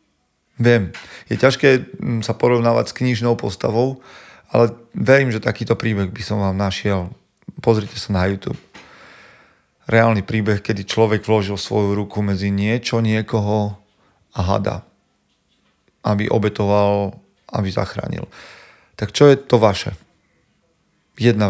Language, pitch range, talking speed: Slovak, 100-120 Hz, 120 wpm